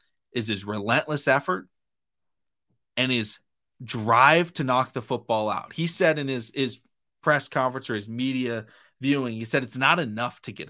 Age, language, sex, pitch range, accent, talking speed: 20-39, English, male, 110-140 Hz, American, 170 wpm